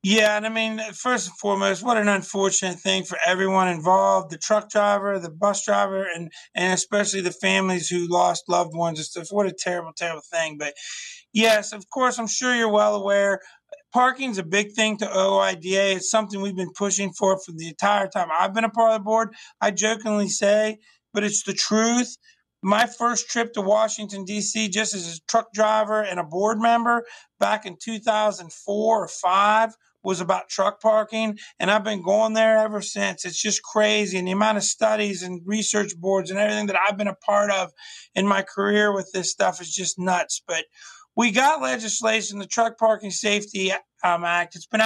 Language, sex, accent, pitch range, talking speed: English, male, American, 190-220 Hz, 195 wpm